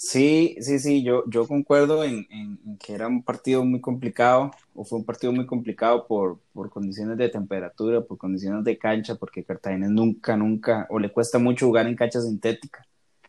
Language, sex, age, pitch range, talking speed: Spanish, male, 20-39, 110-125 Hz, 185 wpm